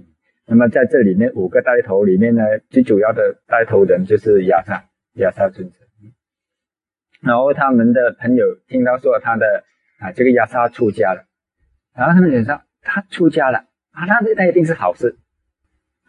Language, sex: Chinese, male